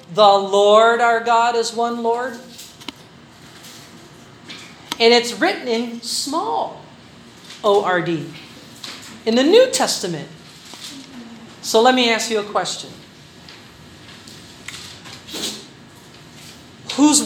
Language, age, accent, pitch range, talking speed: Filipino, 40-59, American, 195-255 Hz, 85 wpm